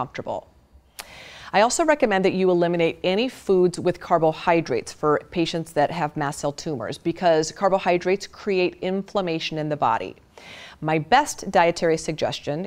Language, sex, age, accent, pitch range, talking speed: English, female, 30-49, American, 150-185 Hz, 140 wpm